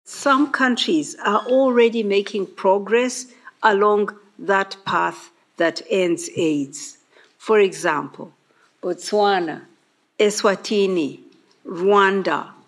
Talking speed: 80 wpm